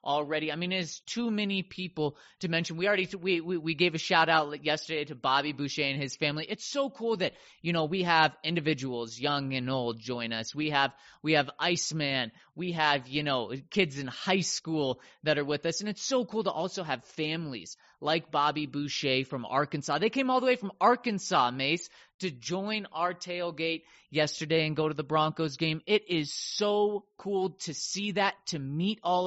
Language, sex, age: English, male, 30-49